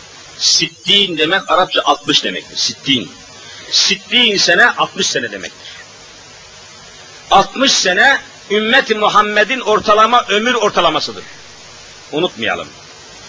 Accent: native